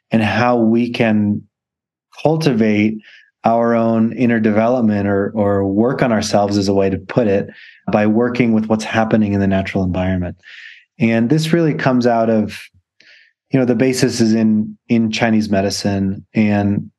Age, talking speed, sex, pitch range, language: 20-39, 160 wpm, male, 105-120 Hz, English